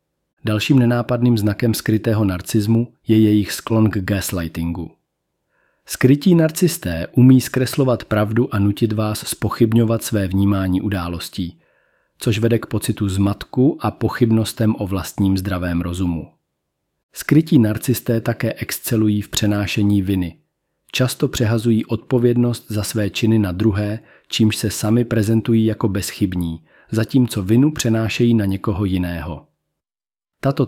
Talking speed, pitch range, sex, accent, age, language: 120 wpm, 105-115 Hz, male, native, 40-59, Czech